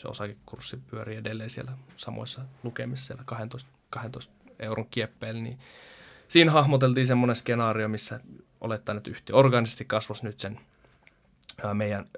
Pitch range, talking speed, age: 110-130 Hz, 125 wpm, 20-39